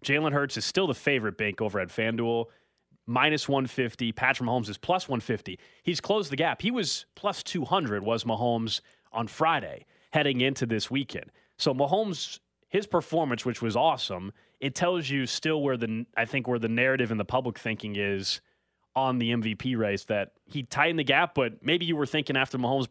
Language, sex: English, male